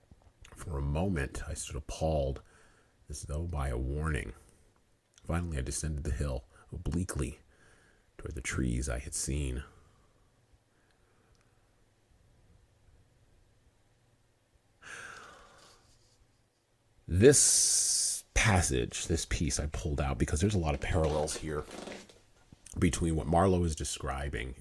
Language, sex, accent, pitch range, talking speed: English, male, American, 70-100 Hz, 100 wpm